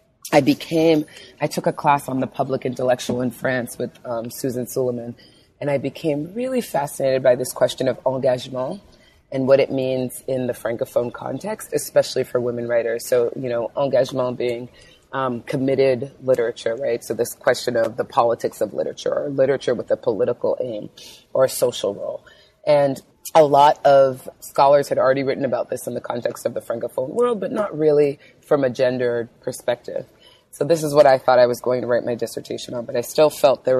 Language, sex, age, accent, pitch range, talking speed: English, female, 30-49, American, 125-145 Hz, 190 wpm